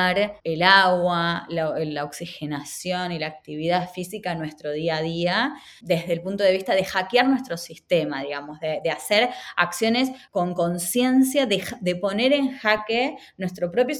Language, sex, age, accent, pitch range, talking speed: Spanish, female, 20-39, Argentinian, 170-225 Hz, 160 wpm